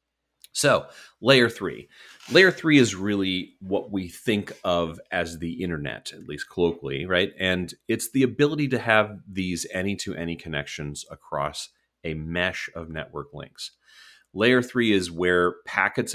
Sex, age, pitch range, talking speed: male, 30-49, 85-110 Hz, 140 wpm